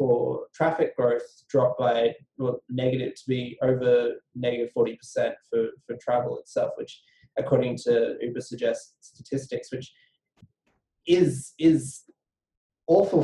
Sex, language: male, English